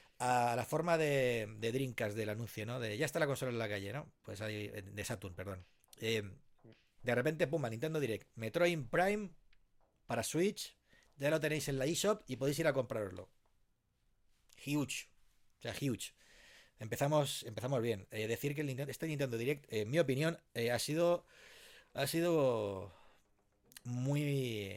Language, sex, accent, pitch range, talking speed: Spanish, male, Spanish, 110-140 Hz, 165 wpm